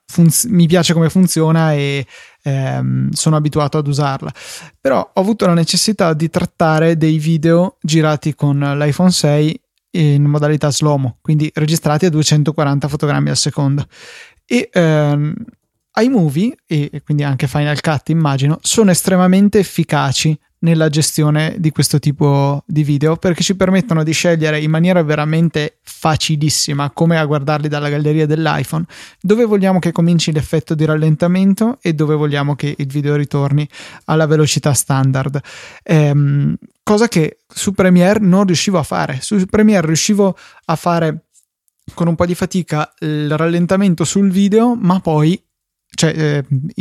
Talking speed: 140 wpm